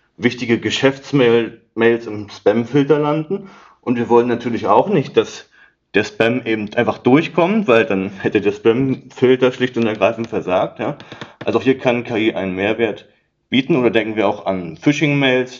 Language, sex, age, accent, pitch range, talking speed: German, male, 30-49, German, 105-130 Hz, 155 wpm